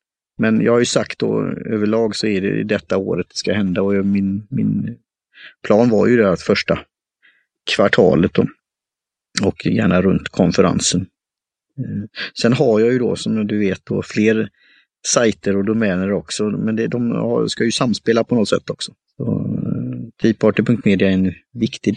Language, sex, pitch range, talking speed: Swedish, male, 105-125 Hz, 170 wpm